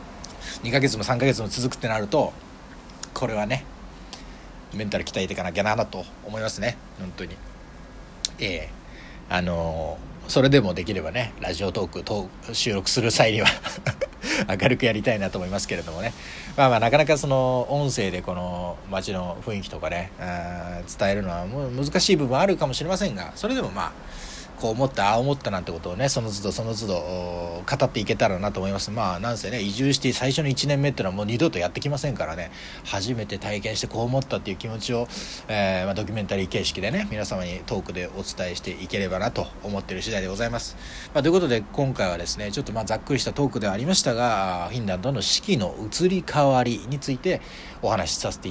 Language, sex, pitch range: Japanese, male, 95-130 Hz